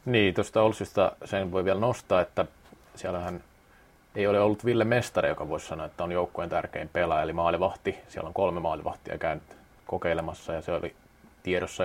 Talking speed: 170 wpm